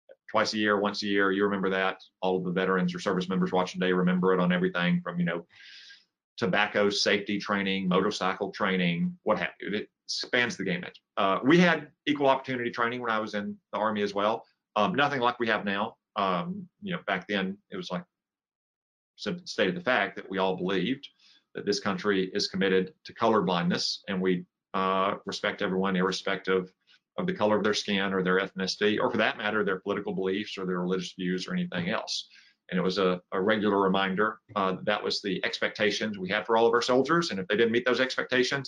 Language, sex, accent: English, male, American